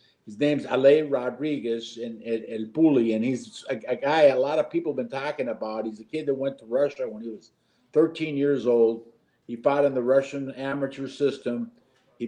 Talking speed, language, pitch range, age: 205 wpm, English, 115-135 Hz, 50-69